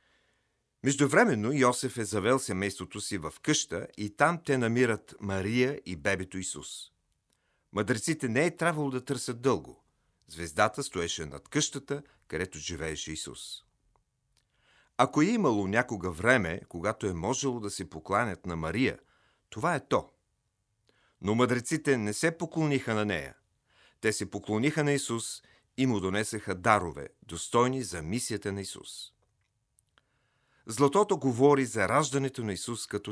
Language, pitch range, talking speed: Bulgarian, 100-135 Hz, 135 wpm